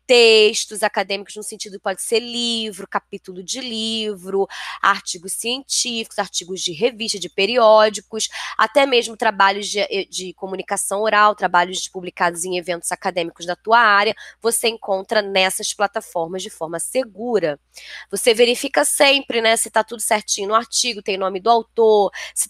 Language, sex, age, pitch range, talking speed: Portuguese, female, 20-39, 190-225 Hz, 145 wpm